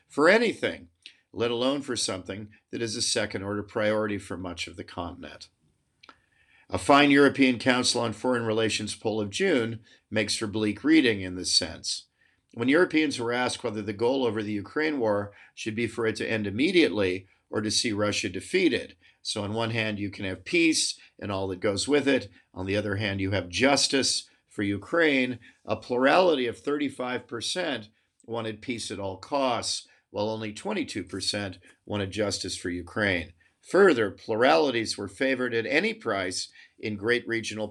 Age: 50-69